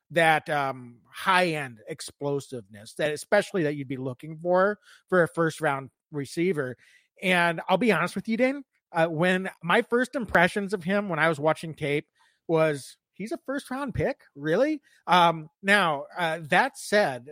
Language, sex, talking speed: English, male, 165 wpm